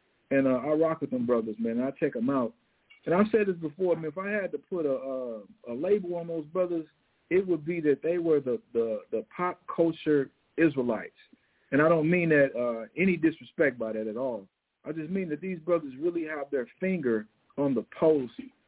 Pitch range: 125-180 Hz